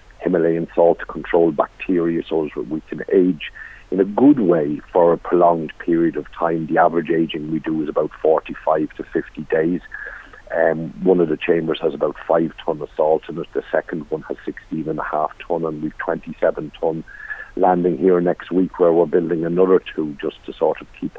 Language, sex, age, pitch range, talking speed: English, male, 50-69, 80-90 Hz, 190 wpm